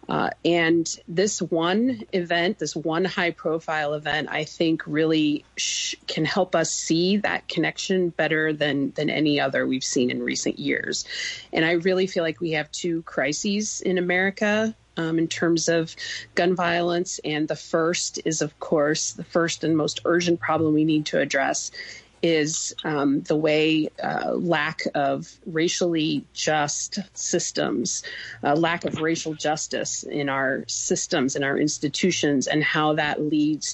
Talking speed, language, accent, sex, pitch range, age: 155 wpm, English, American, female, 150-175 Hz, 40-59